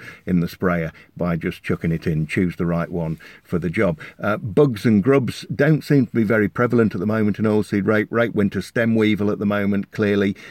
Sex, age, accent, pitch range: male, 50-69, British, 90-115 Hz